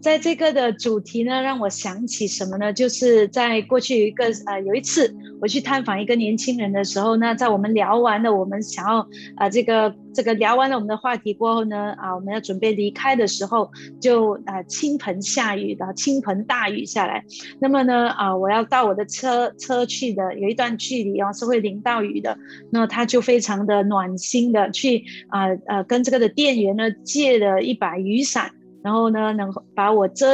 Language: Chinese